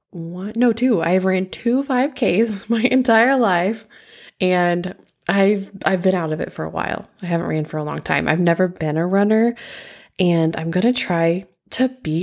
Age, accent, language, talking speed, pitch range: 20-39, American, English, 190 wpm, 170-220 Hz